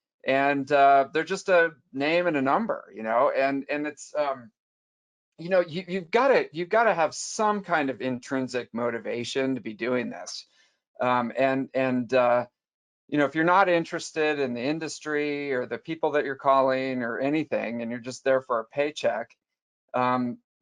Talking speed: 185 wpm